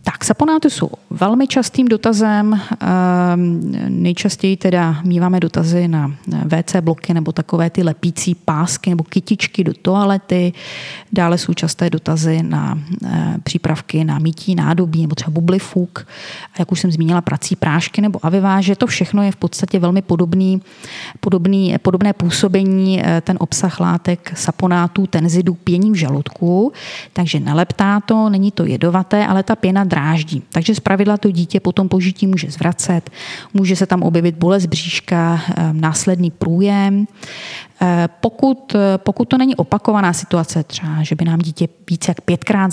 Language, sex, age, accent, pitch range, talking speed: Czech, female, 20-39, native, 165-190 Hz, 145 wpm